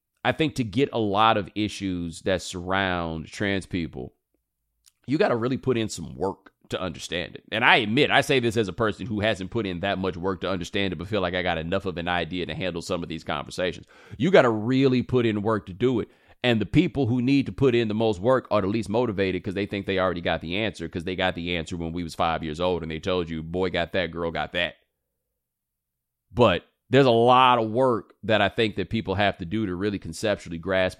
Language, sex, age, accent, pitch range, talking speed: English, male, 30-49, American, 90-110 Hz, 250 wpm